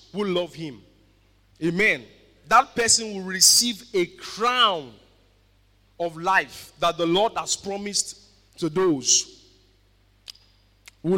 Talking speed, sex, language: 105 wpm, male, English